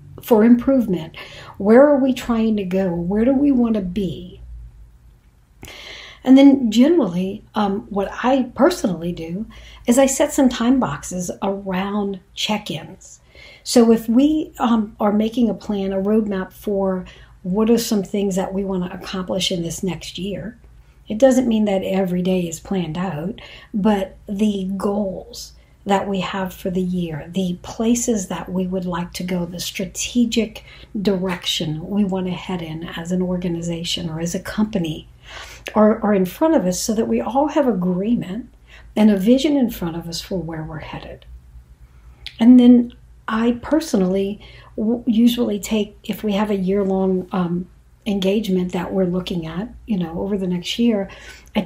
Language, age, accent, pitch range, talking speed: English, 60-79, American, 180-225 Hz, 165 wpm